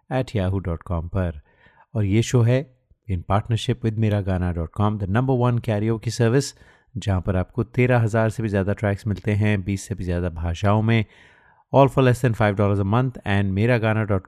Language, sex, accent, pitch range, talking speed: Hindi, male, native, 95-120 Hz, 210 wpm